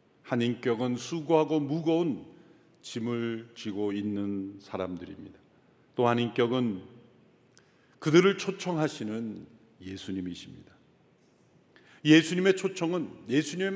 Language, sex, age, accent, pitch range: Korean, male, 50-69, native, 120-165 Hz